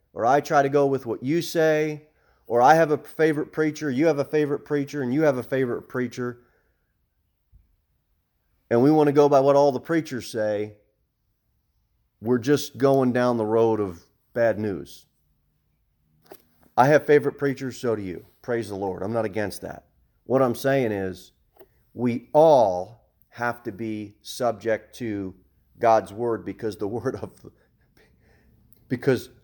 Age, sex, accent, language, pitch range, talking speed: 30-49, male, American, English, 105-145 Hz, 160 wpm